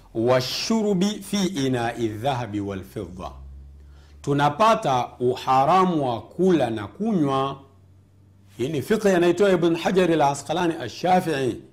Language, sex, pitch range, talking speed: Swahili, male, 115-195 Hz, 90 wpm